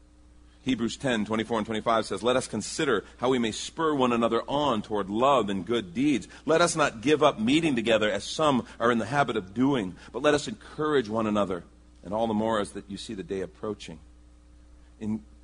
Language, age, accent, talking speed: English, 40-59, American, 210 wpm